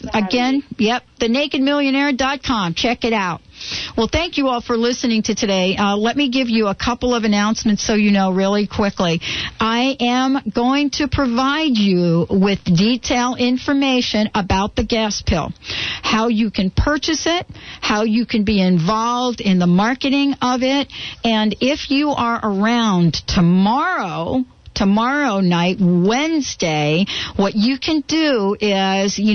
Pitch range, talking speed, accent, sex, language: 200-260 Hz, 145 wpm, American, female, English